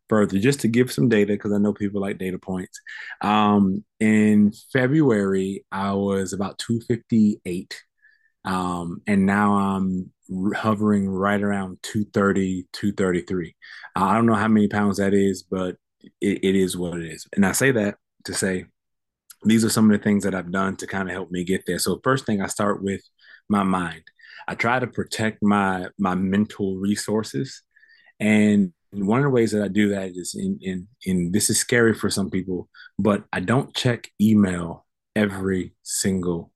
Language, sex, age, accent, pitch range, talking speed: English, male, 20-39, American, 95-110 Hz, 175 wpm